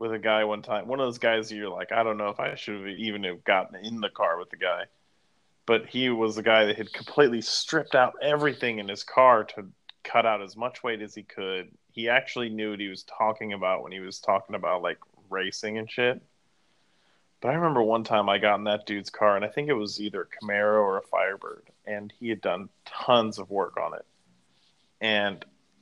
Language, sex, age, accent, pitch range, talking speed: English, male, 20-39, American, 105-120 Hz, 230 wpm